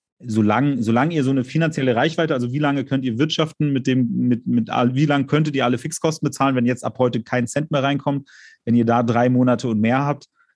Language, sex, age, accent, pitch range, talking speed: German, male, 30-49, German, 110-135 Hz, 235 wpm